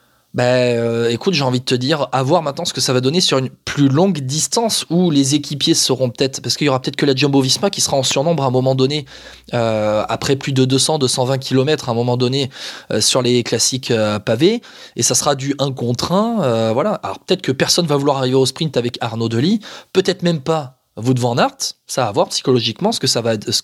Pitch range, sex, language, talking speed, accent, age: 125-165 Hz, male, French, 240 wpm, French, 20-39